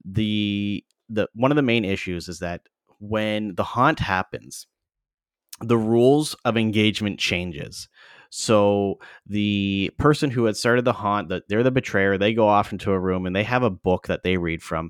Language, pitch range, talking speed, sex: English, 95-110 Hz, 180 wpm, male